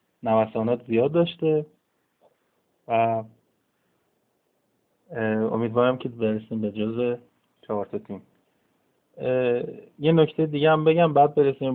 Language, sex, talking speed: Persian, male, 90 wpm